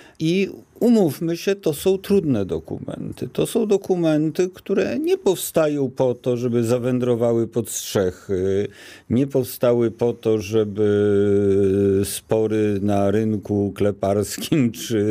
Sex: male